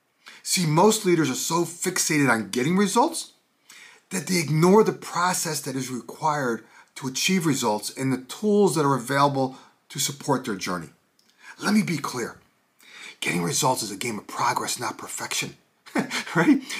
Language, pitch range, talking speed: English, 145-225 Hz, 155 wpm